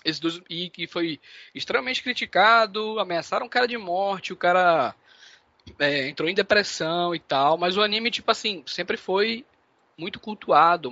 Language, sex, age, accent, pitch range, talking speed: Portuguese, male, 20-39, Brazilian, 150-205 Hz, 160 wpm